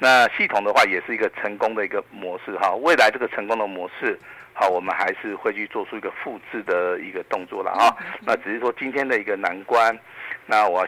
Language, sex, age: Chinese, male, 50-69